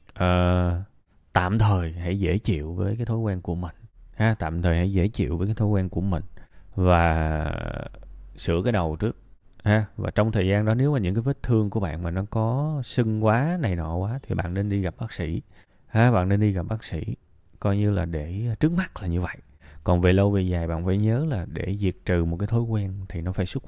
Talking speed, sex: 235 wpm, male